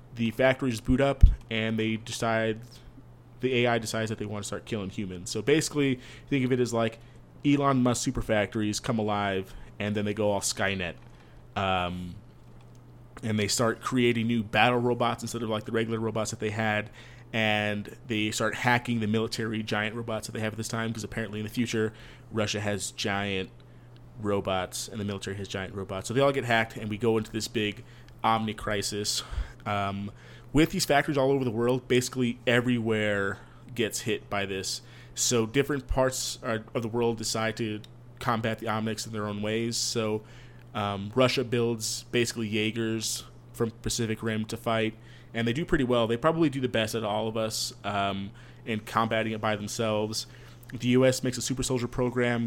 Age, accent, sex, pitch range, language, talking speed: 30-49, American, male, 110-120 Hz, English, 185 wpm